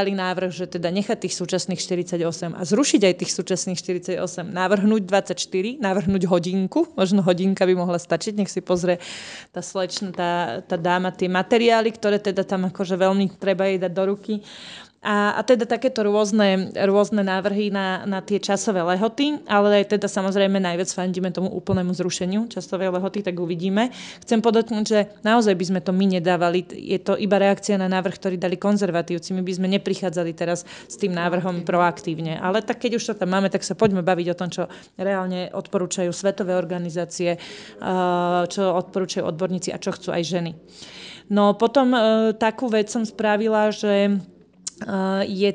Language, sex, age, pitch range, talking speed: Slovak, female, 30-49, 185-205 Hz, 170 wpm